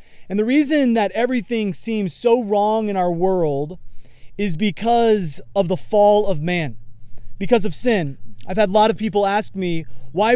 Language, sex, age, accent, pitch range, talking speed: English, male, 30-49, American, 165-215 Hz, 175 wpm